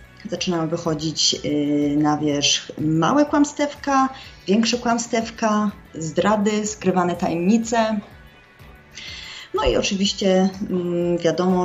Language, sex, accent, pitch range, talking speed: Polish, female, native, 175-225 Hz, 75 wpm